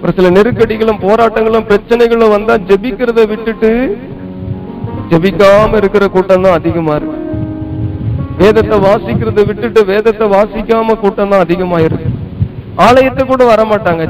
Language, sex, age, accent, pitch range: Tamil, male, 50-69, native, 180-265 Hz